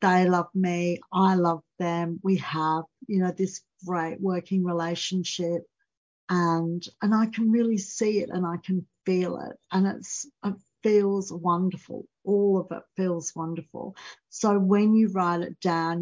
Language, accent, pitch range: English, Australian, 175-210 Hz